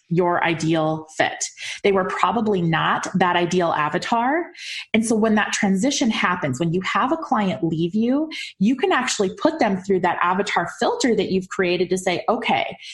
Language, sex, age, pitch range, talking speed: English, female, 20-39, 180-260 Hz, 175 wpm